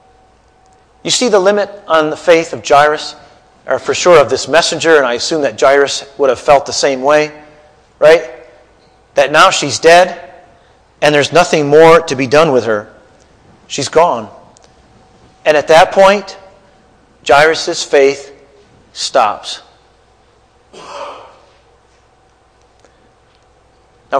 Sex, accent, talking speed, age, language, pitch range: male, American, 125 wpm, 40-59, English, 140-185 Hz